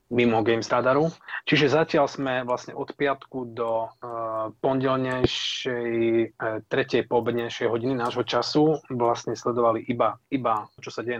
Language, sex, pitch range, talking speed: Slovak, male, 115-130 Hz, 125 wpm